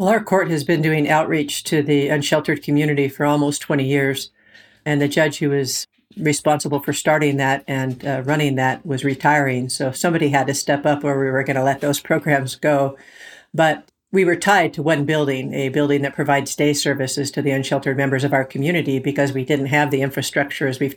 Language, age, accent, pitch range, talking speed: English, 50-69, American, 140-150 Hz, 210 wpm